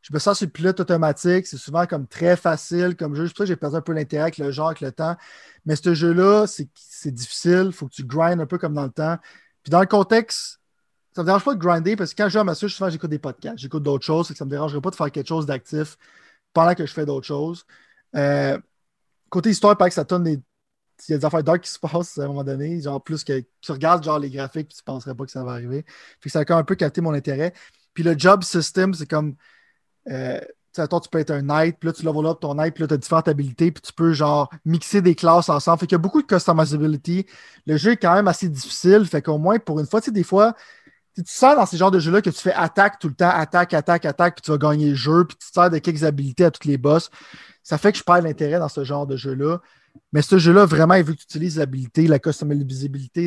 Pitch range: 150-180 Hz